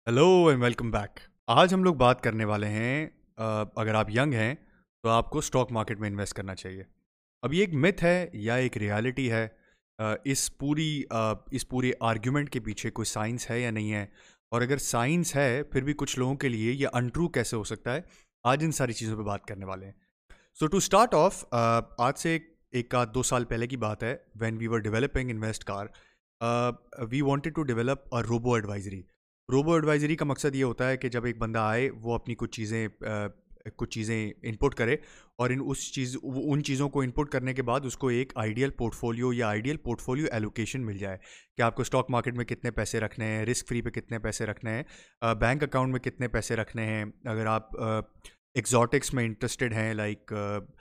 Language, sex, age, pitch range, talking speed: Urdu, male, 30-49, 110-130 Hz, 195 wpm